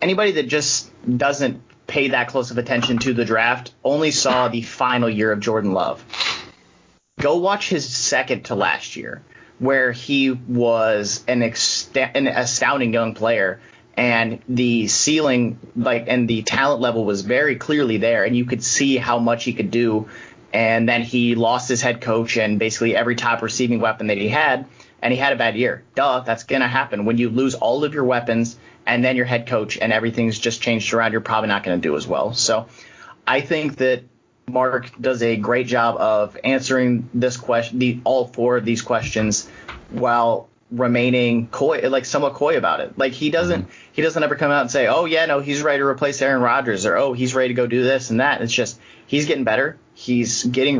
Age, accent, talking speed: 30-49, American, 205 wpm